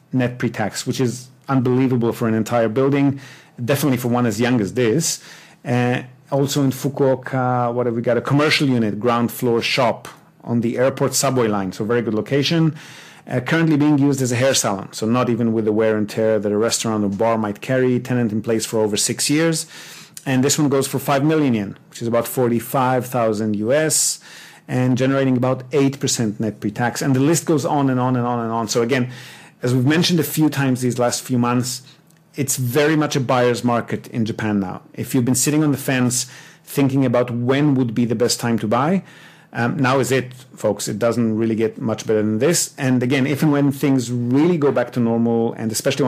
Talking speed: 215 wpm